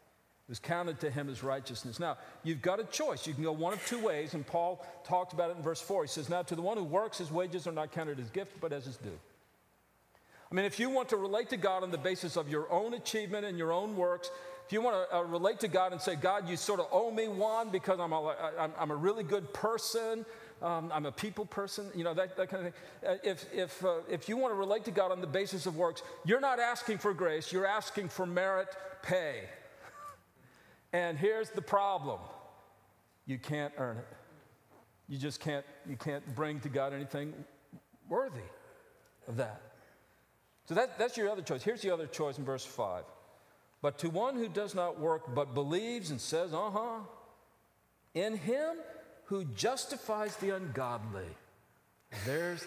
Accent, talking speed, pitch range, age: American, 205 wpm, 150-205 Hz, 50-69